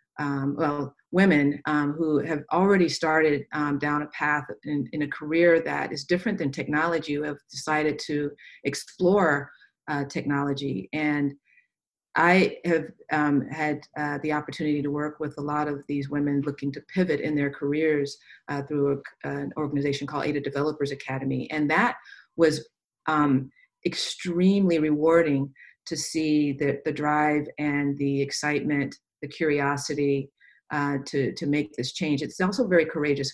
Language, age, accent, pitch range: English, 40-59, American, 145-165 Hz